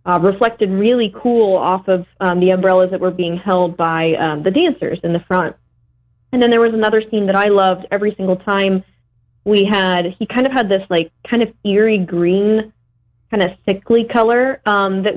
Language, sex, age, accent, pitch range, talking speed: English, female, 20-39, American, 175-215 Hz, 200 wpm